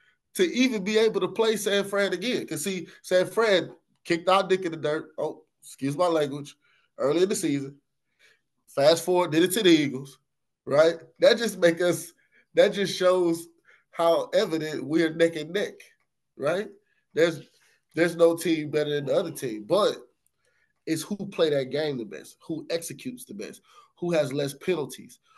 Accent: American